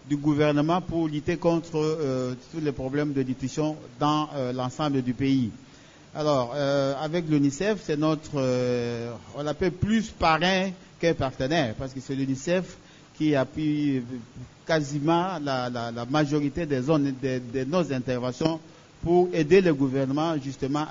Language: French